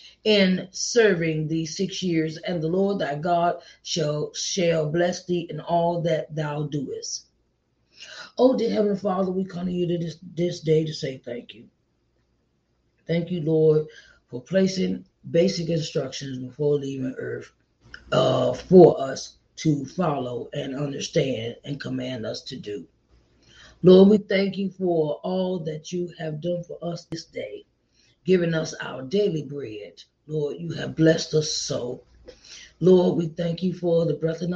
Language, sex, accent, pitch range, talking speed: English, female, American, 155-195 Hz, 155 wpm